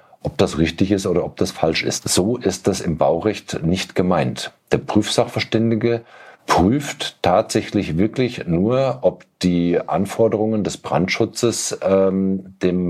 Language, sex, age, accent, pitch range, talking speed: German, male, 50-69, German, 85-110 Hz, 135 wpm